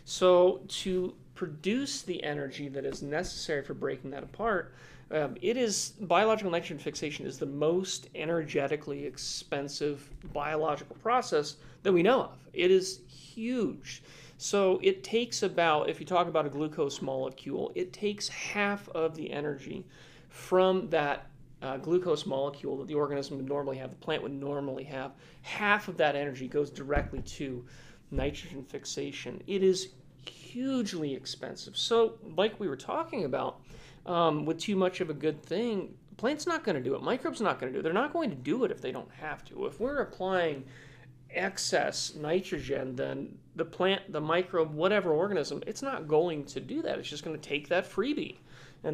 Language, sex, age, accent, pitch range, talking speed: English, male, 30-49, American, 140-195 Hz, 175 wpm